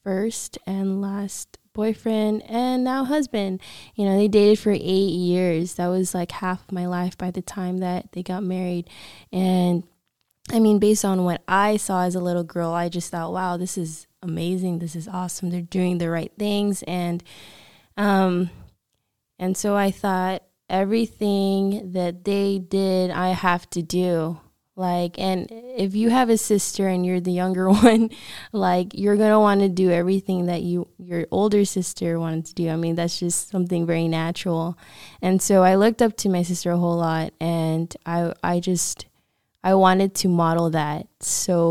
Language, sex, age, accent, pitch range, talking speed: English, female, 20-39, American, 170-195 Hz, 180 wpm